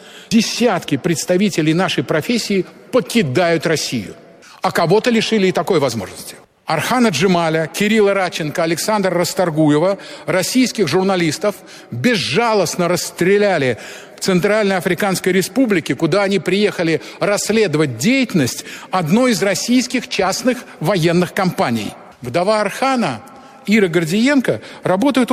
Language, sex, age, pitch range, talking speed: Russian, male, 50-69, 175-230 Hz, 100 wpm